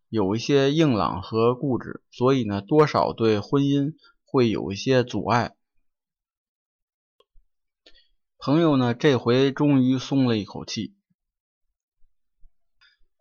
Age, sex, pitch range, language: 20-39, male, 115-155 Hz, Chinese